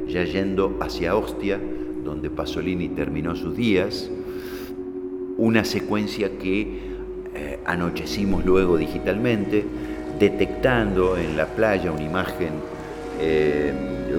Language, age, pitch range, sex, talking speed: Spanish, 50-69, 70-95 Hz, male, 95 wpm